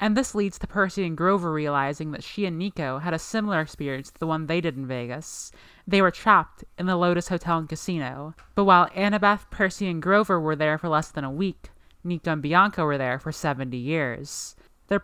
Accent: American